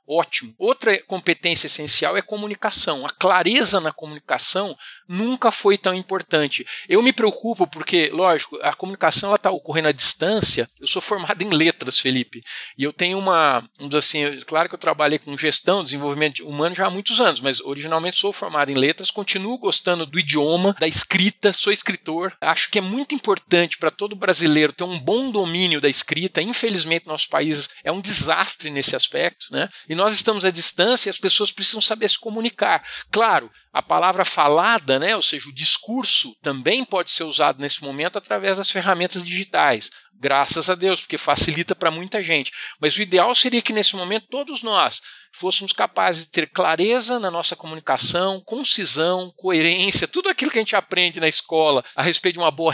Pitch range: 160-210 Hz